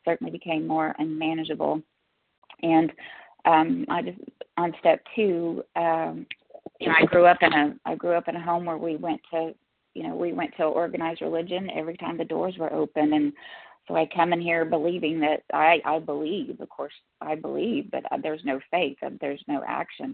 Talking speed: 195 wpm